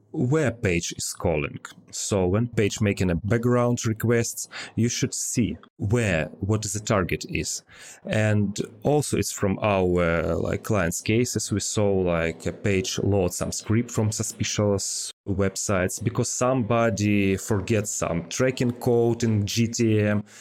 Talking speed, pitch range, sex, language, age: 135 wpm, 95-120 Hz, male, English, 30-49